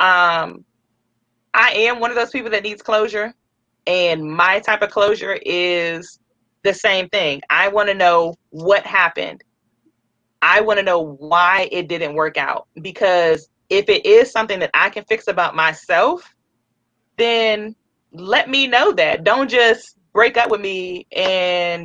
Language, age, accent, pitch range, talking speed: English, 20-39, American, 165-220 Hz, 155 wpm